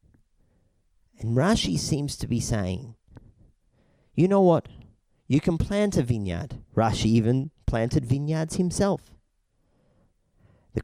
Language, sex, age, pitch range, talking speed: English, male, 40-59, 100-130 Hz, 110 wpm